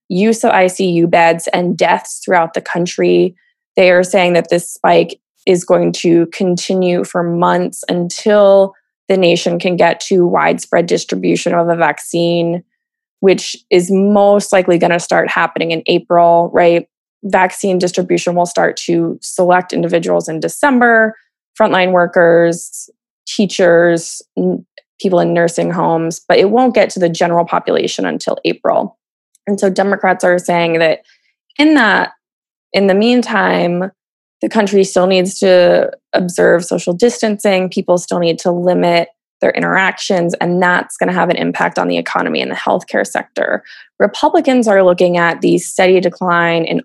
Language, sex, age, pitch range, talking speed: English, female, 20-39, 170-200 Hz, 150 wpm